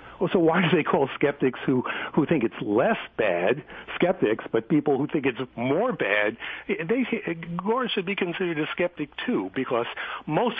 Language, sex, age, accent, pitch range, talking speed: English, male, 60-79, American, 135-185 Hz, 170 wpm